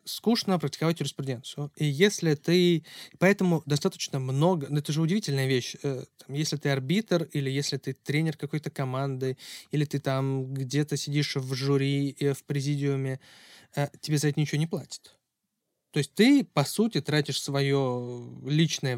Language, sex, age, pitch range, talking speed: Russian, male, 20-39, 135-170 Hz, 140 wpm